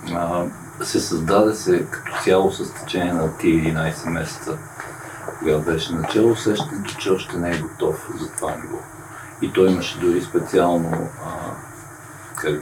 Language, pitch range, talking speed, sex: Bulgarian, 80-120 Hz, 140 wpm, male